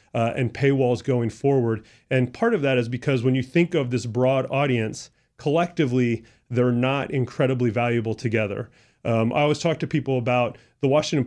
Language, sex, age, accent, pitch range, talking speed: English, male, 30-49, American, 115-135 Hz, 175 wpm